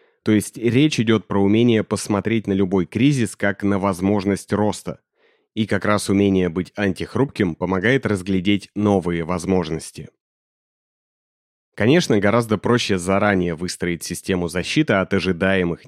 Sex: male